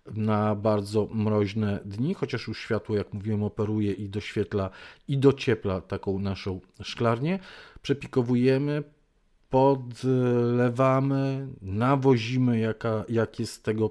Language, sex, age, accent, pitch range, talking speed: Polish, male, 40-59, native, 110-135 Hz, 105 wpm